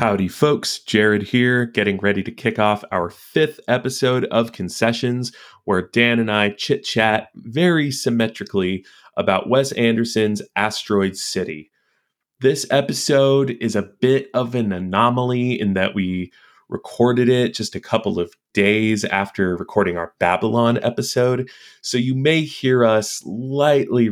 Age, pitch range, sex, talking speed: 20-39, 95-125 Hz, male, 140 wpm